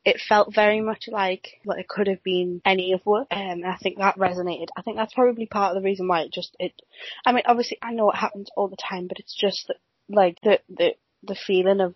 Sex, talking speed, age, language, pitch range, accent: female, 260 wpm, 20-39, English, 180-230 Hz, British